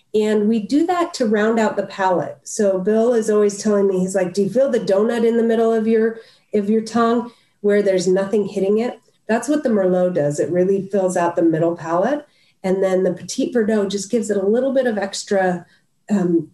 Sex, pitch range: female, 175-215 Hz